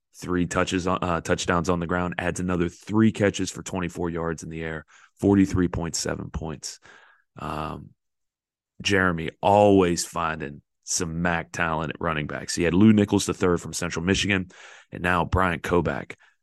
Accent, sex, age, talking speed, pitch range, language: American, male, 30-49, 165 wpm, 85-100 Hz, English